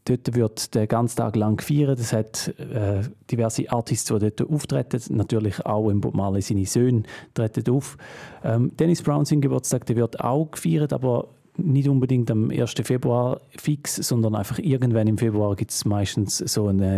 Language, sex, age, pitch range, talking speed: German, male, 40-59, 105-130 Hz, 165 wpm